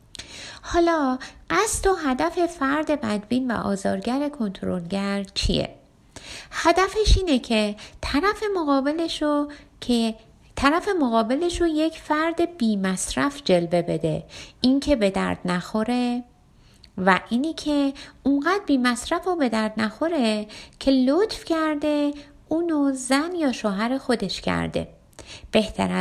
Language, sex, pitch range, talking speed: Persian, female, 215-295 Hz, 110 wpm